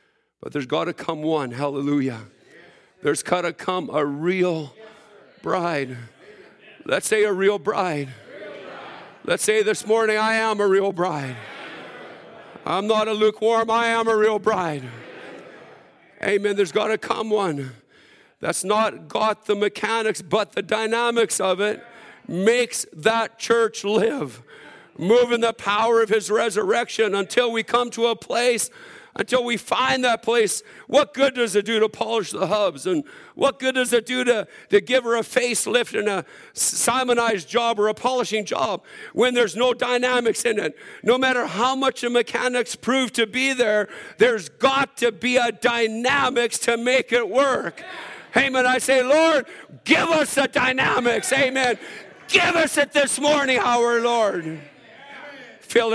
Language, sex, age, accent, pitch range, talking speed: English, male, 50-69, American, 205-255 Hz, 155 wpm